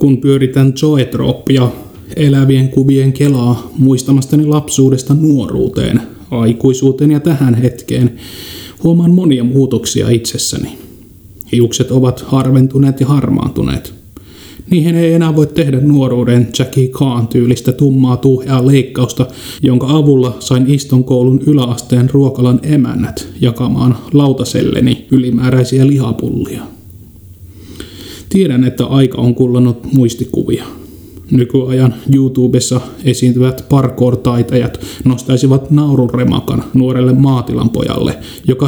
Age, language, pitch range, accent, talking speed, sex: 30-49, Finnish, 120-135 Hz, native, 95 wpm, male